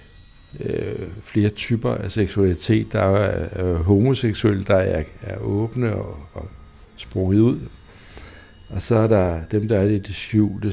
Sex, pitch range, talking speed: male, 90-110 Hz, 145 wpm